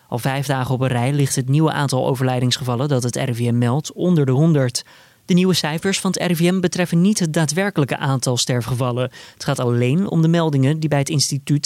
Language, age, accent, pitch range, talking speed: Dutch, 20-39, Dutch, 130-155 Hz, 205 wpm